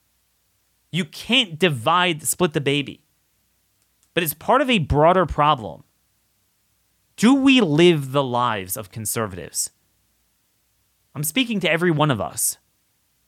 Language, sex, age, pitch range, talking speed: English, male, 30-49, 110-180 Hz, 120 wpm